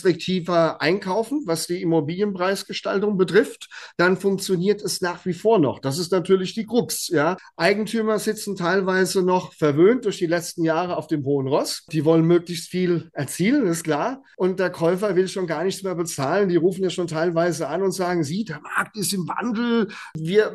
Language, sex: German, male